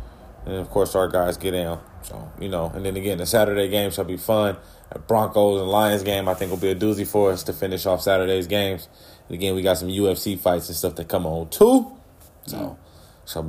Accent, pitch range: American, 90-110 Hz